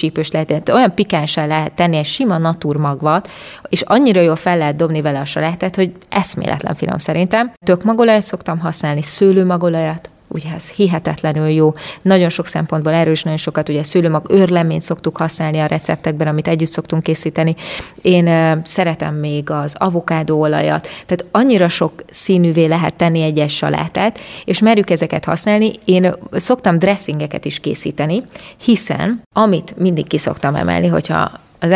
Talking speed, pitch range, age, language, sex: 140 wpm, 155-185 Hz, 20-39, Hungarian, female